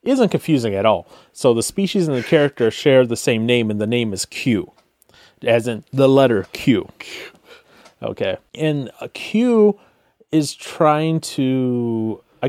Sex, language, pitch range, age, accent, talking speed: male, English, 110-145 Hz, 30-49, American, 155 wpm